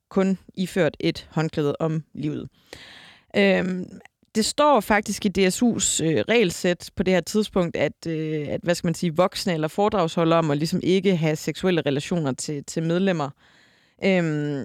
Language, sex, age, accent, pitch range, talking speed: Danish, female, 30-49, native, 160-205 Hz, 160 wpm